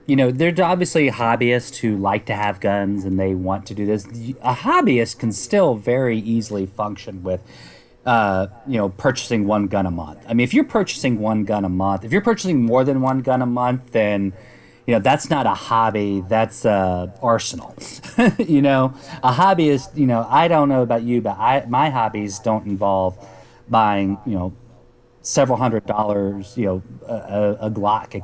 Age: 30-49